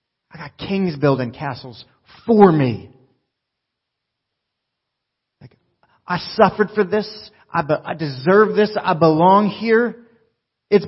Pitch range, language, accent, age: 130-195 Hz, English, American, 30-49